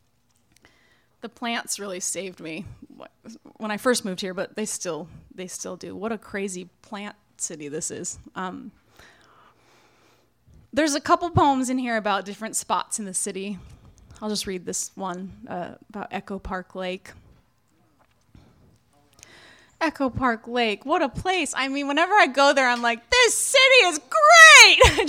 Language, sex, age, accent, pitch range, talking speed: English, female, 20-39, American, 195-250 Hz, 155 wpm